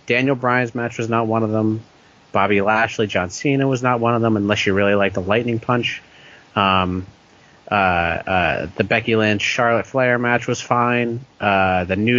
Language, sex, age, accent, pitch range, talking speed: English, male, 30-49, American, 100-120 Hz, 185 wpm